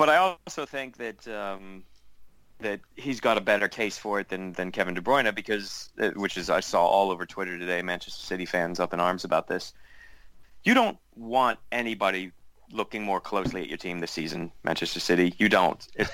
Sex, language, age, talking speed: male, English, 30-49, 195 wpm